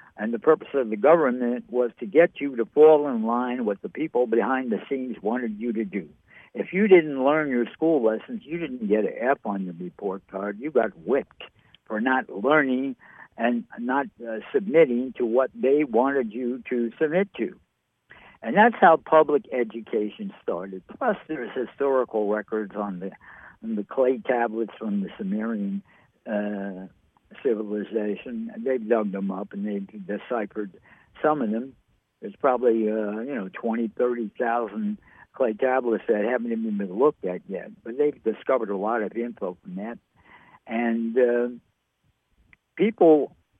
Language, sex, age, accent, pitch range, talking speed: English, male, 60-79, American, 110-155 Hz, 160 wpm